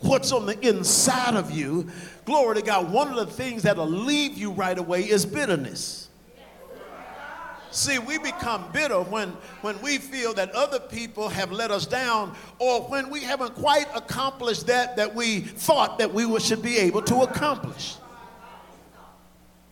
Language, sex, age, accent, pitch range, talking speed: English, male, 50-69, American, 180-245 Hz, 160 wpm